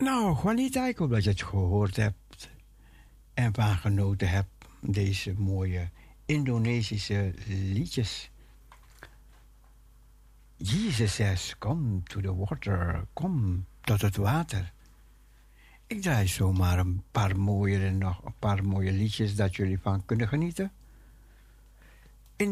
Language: English